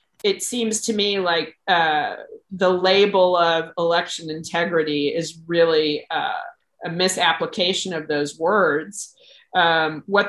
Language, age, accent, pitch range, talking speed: English, 40-59, American, 165-205 Hz, 120 wpm